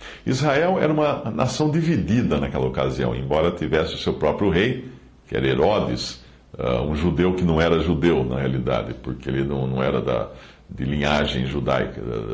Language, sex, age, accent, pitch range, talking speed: Portuguese, male, 60-79, Brazilian, 70-115 Hz, 155 wpm